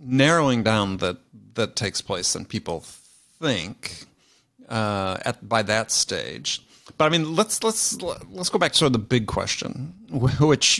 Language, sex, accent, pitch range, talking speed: English, male, American, 110-140 Hz, 160 wpm